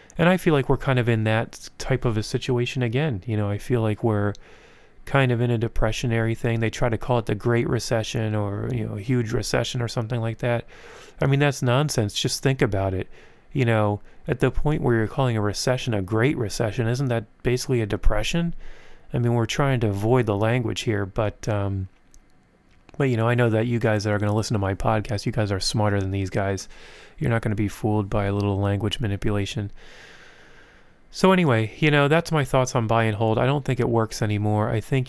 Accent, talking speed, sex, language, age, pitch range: American, 230 wpm, male, English, 30-49, 105-125 Hz